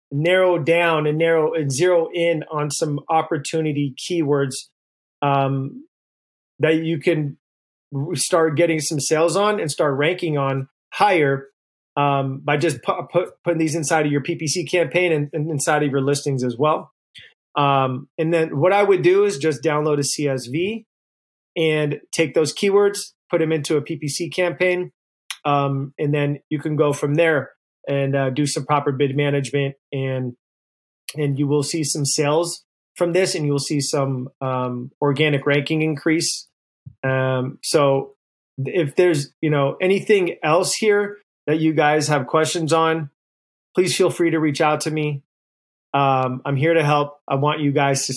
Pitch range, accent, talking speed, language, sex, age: 140-165 Hz, American, 165 wpm, English, male, 30-49